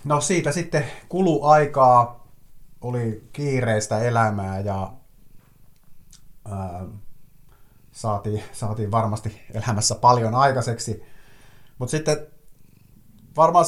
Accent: native